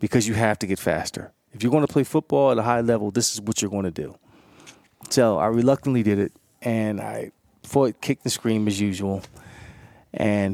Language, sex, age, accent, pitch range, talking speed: English, male, 30-49, American, 100-120 Hz, 215 wpm